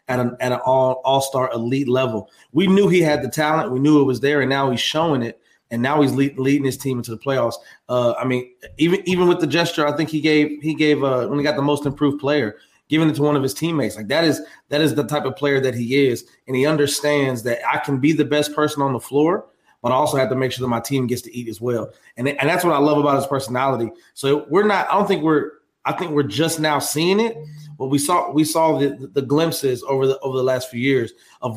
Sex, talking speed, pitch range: male, 270 wpm, 130-150 Hz